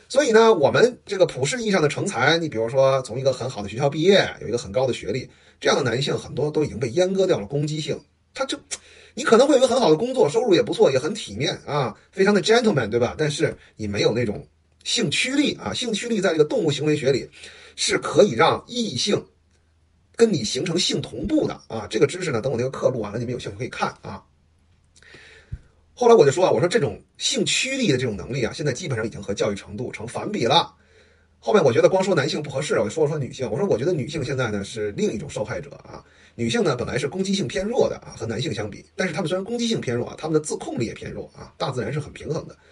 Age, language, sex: 30-49, Chinese, male